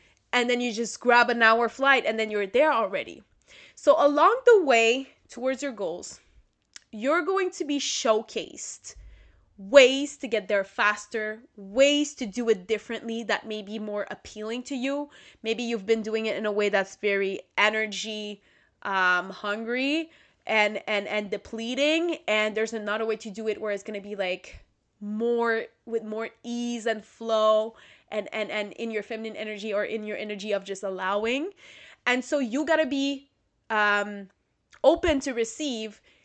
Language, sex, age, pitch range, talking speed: English, female, 20-39, 210-265 Hz, 170 wpm